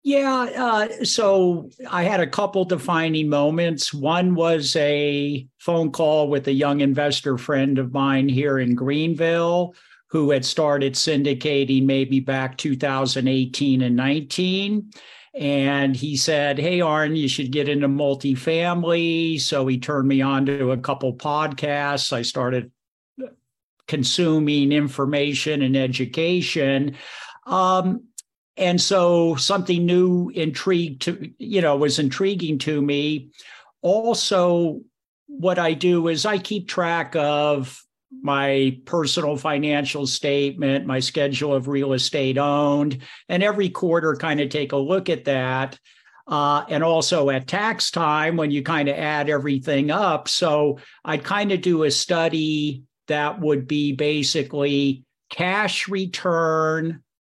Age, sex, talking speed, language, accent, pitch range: 50-69, male, 130 wpm, English, American, 140-170 Hz